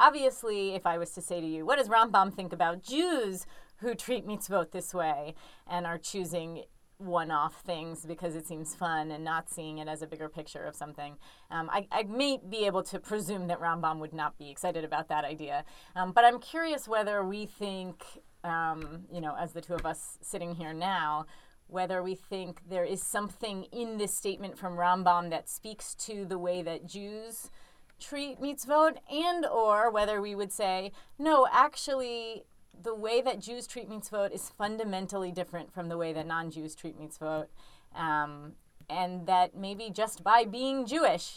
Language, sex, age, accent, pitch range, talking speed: English, female, 30-49, American, 170-220 Hz, 185 wpm